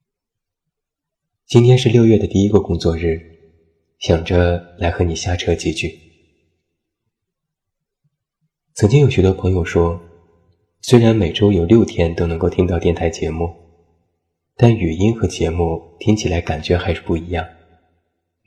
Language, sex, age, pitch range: Chinese, male, 20-39, 85-100 Hz